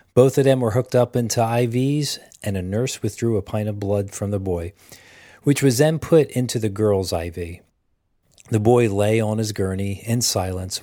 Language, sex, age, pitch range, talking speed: English, male, 40-59, 95-125 Hz, 195 wpm